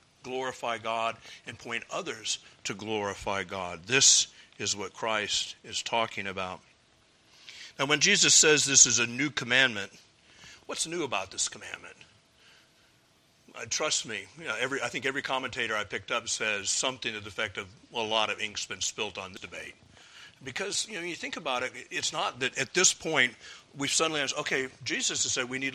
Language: English